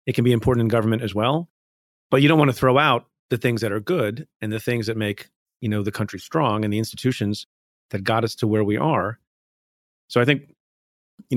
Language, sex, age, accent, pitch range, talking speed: English, male, 30-49, American, 100-120 Hz, 230 wpm